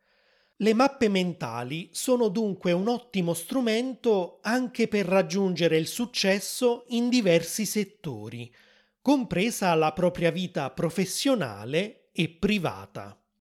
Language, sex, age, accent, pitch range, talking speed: Italian, male, 30-49, native, 160-215 Hz, 100 wpm